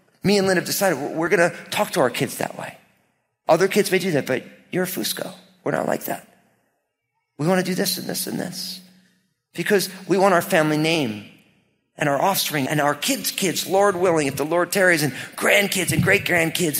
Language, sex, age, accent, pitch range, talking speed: English, male, 40-59, American, 155-205 Hz, 210 wpm